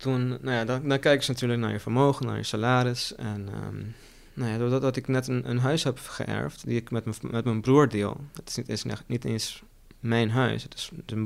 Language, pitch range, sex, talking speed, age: Dutch, 110-130 Hz, male, 235 wpm, 20-39